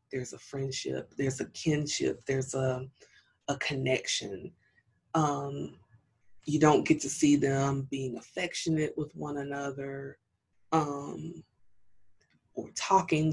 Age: 20-39